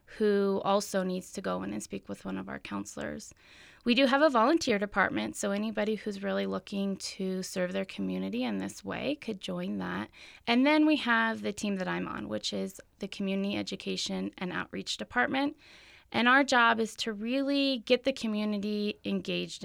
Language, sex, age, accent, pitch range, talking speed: English, female, 20-39, American, 185-225 Hz, 185 wpm